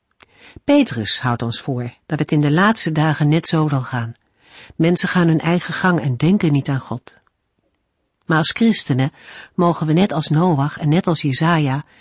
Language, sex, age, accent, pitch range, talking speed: Dutch, female, 50-69, Dutch, 140-185 Hz, 180 wpm